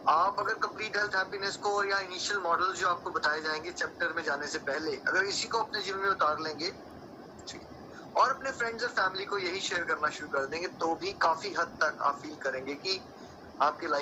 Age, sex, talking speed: 30-49, male, 45 wpm